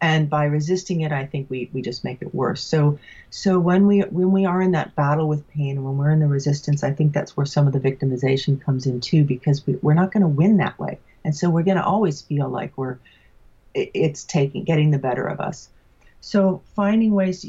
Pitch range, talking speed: 145-180 Hz, 235 wpm